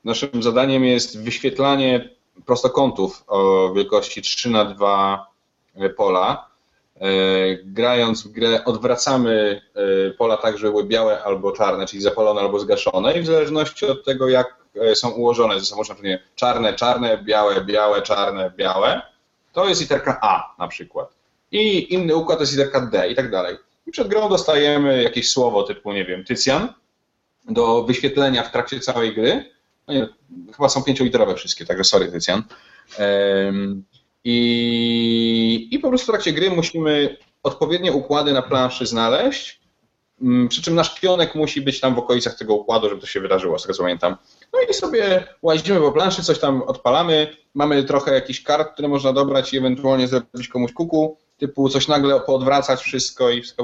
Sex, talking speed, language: male, 160 wpm, Polish